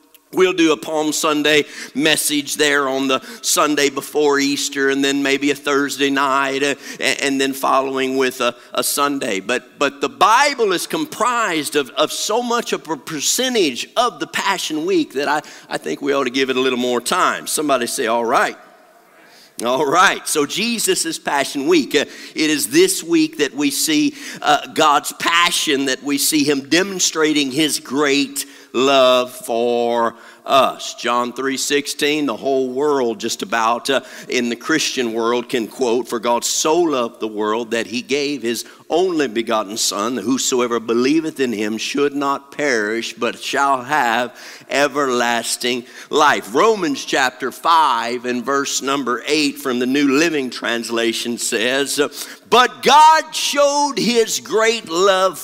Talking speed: 160 wpm